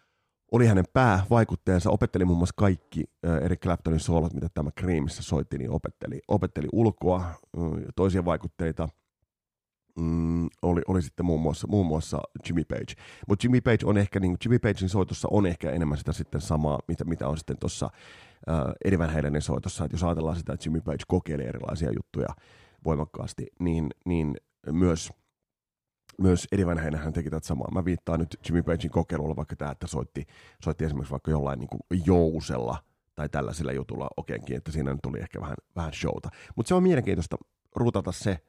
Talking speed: 165 wpm